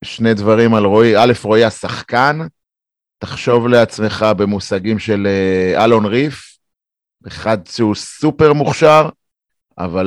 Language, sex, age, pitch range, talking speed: Hebrew, male, 30-49, 100-130 Hz, 105 wpm